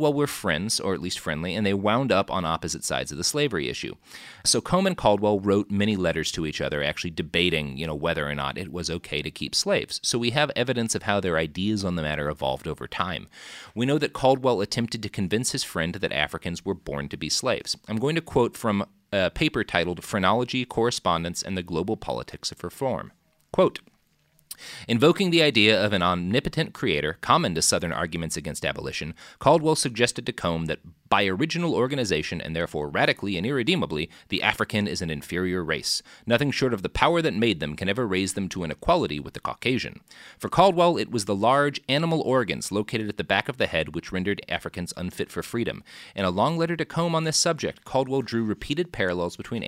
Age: 30-49